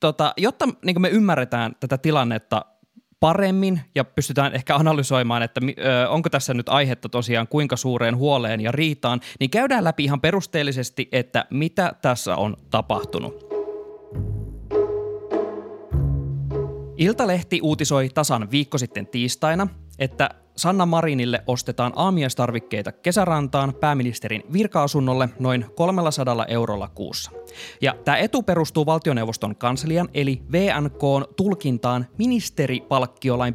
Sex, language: male, Finnish